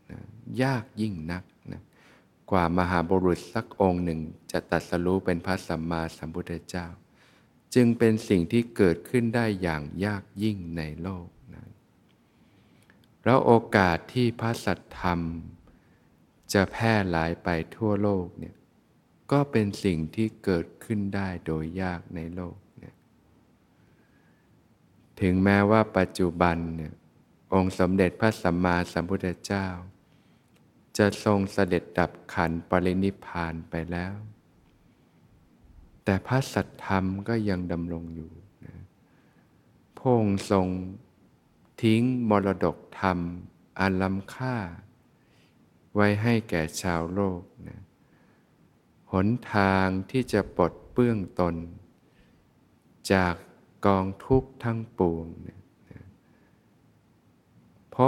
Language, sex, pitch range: Thai, male, 85-105 Hz